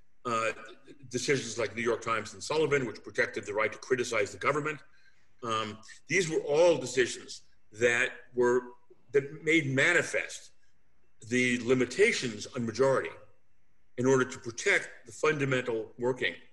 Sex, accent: male, American